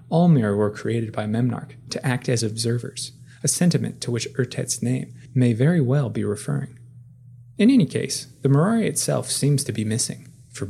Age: 20-39